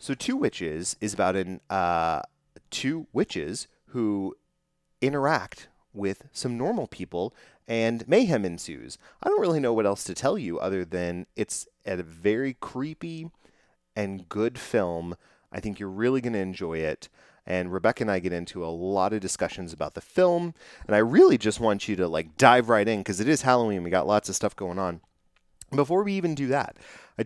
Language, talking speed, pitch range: English, 185 wpm, 95-125 Hz